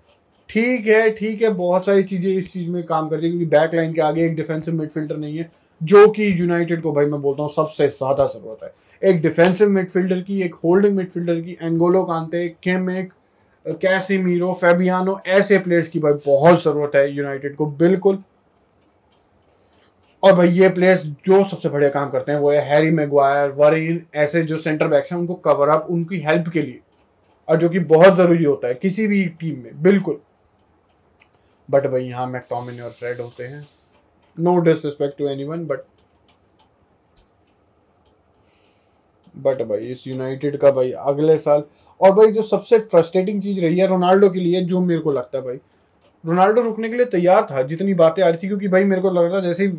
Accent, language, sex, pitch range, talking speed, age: native, Hindi, male, 140-185 Hz, 160 wpm, 20-39